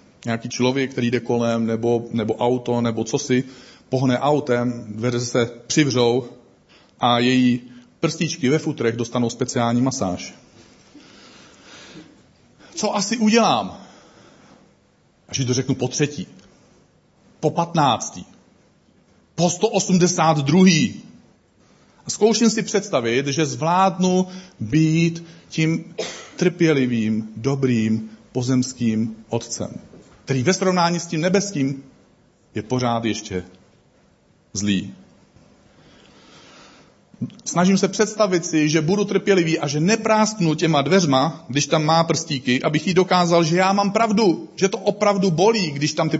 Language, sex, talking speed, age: Czech, male, 115 wpm, 40-59